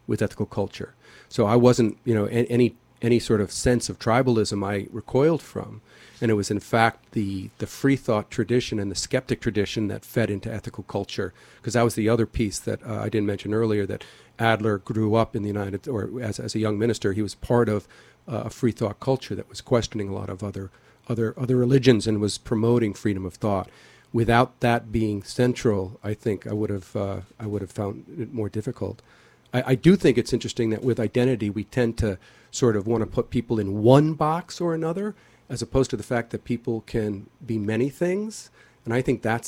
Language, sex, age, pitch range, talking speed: English, male, 50-69, 105-120 Hz, 215 wpm